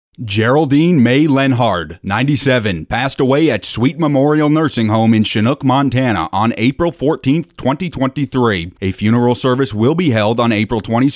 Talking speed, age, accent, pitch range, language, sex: 145 wpm, 30-49, American, 110-140 Hz, English, male